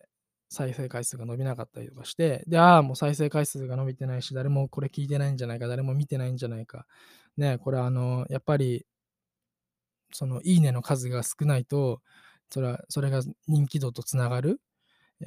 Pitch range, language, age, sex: 130-190 Hz, Japanese, 20-39, male